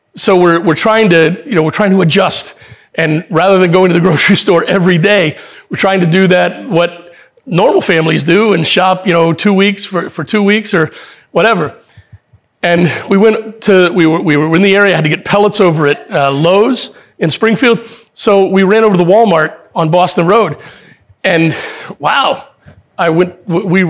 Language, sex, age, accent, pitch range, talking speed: English, male, 40-59, American, 170-210 Hz, 200 wpm